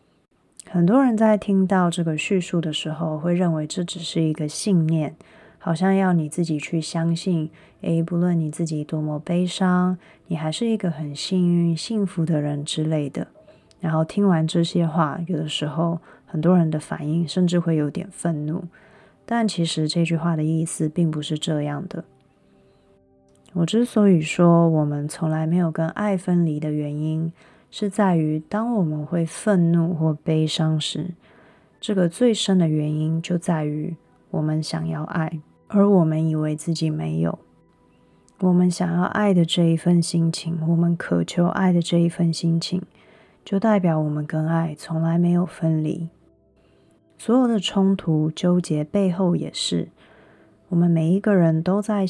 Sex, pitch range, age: female, 155-180 Hz, 20-39